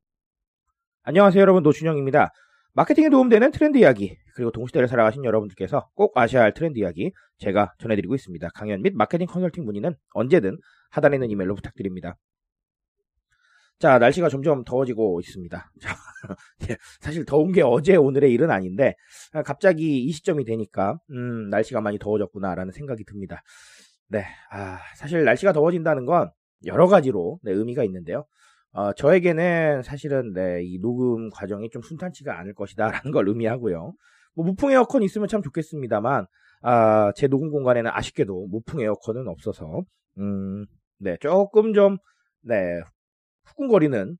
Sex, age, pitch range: male, 30-49, 105-170 Hz